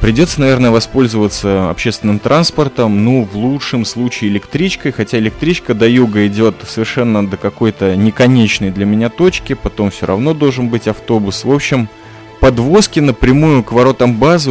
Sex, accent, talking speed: male, native, 145 wpm